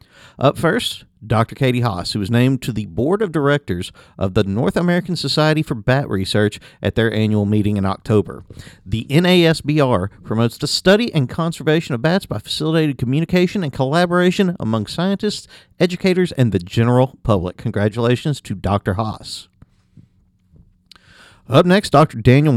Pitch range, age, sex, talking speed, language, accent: 110-155 Hz, 50-69, male, 150 wpm, English, American